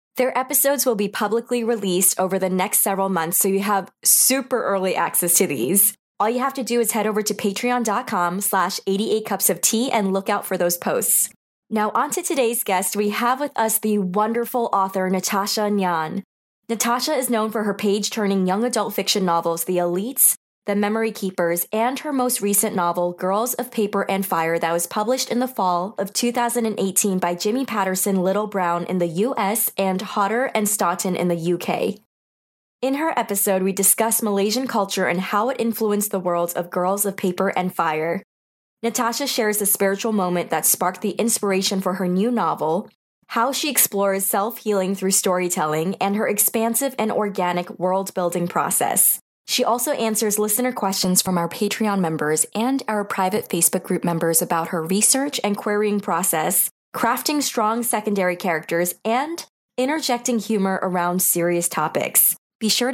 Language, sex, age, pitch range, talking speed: English, female, 20-39, 180-225 Hz, 170 wpm